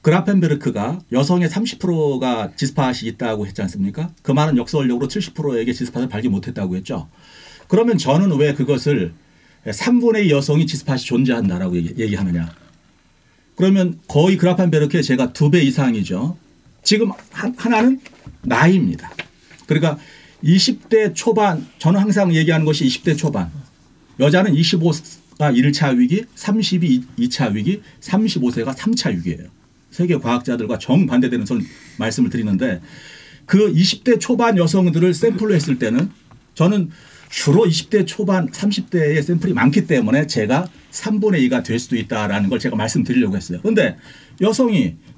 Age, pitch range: 40-59, 130-195 Hz